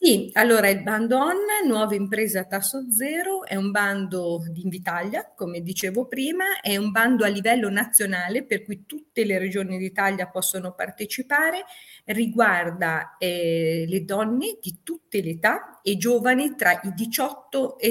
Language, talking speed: Italian, 155 wpm